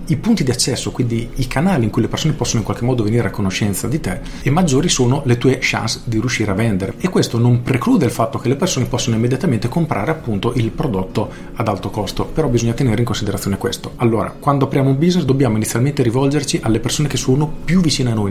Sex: male